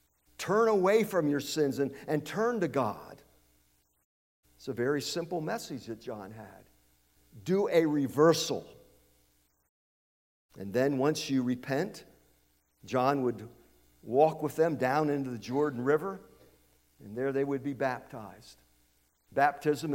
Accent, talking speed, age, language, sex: American, 130 wpm, 50-69, English, male